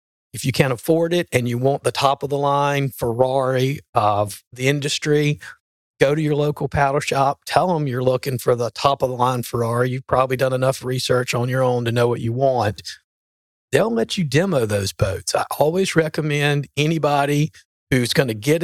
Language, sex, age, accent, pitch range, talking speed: English, male, 40-59, American, 120-145 Hz, 185 wpm